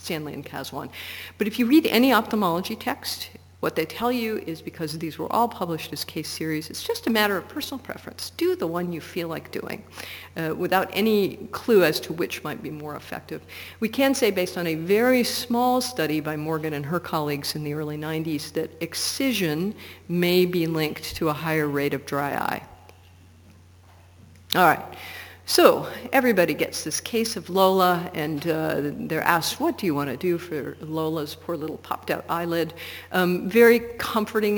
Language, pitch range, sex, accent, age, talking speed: English, 155-210 Hz, female, American, 50-69, 185 wpm